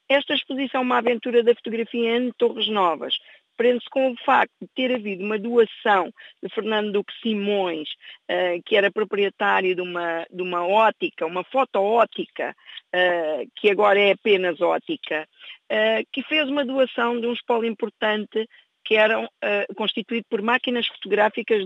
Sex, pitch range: female, 195-240 Hz